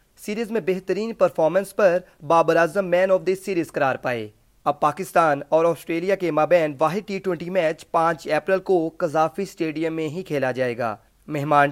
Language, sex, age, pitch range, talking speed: Urdu, male, 30-49, 150-185 Hz, 175 wpm